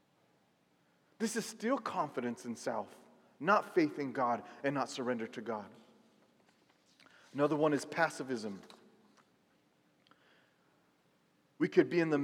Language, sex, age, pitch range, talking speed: English, male, 30-49, 140-190 Hz, 120 wpm